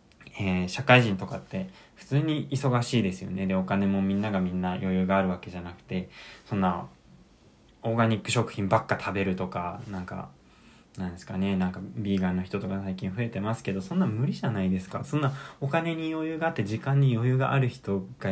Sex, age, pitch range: male, 20-39, 95-135 Hz